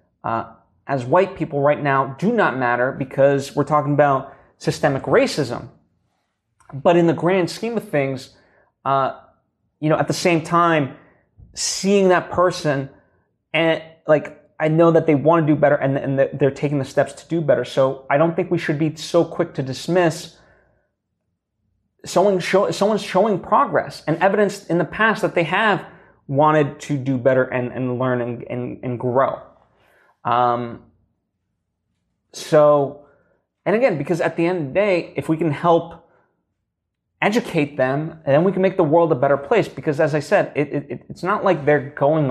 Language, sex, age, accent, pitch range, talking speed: English, male, 20-39, American, 135-170 Hz, 170 wpm